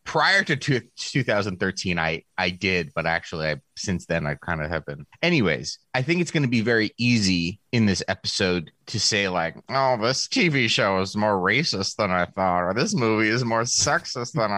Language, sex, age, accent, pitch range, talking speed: English, male, 30-49, American, 90-120 Hz, 200 wpm